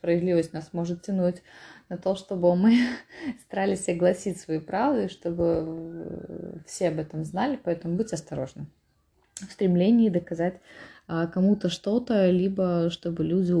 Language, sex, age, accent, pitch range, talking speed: Russian, female, 20-39, native, 160-195 Hz, 125 wpm